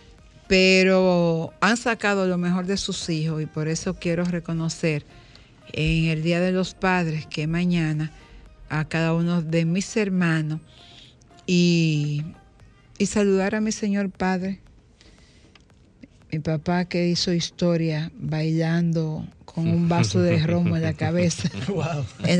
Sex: female